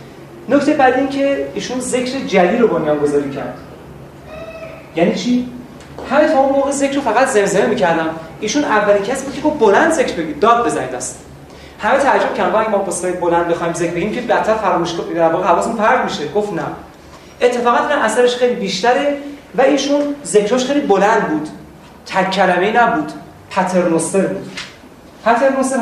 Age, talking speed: 30-49, 155 wpm